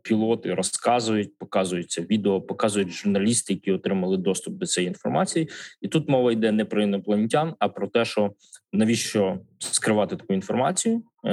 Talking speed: 145 wpm